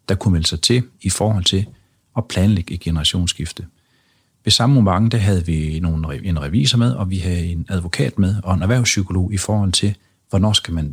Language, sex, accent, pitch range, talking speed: Danish, male, native, 90-110 Hz, 190 wpm